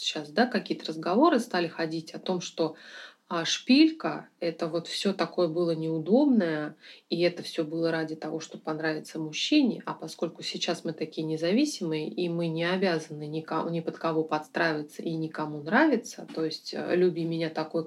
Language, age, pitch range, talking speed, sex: Russian, 30-49, 165-210 Hz, 160 wpm, female